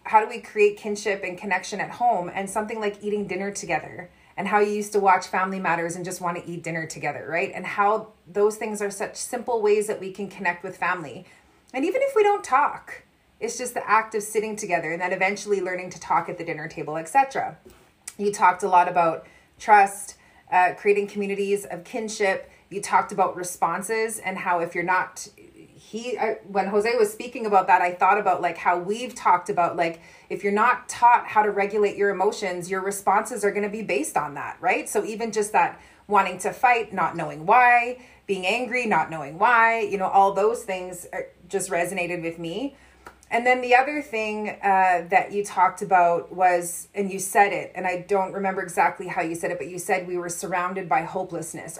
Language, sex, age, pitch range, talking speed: English, female, 30-49, 180-215 Hz, 210 wpm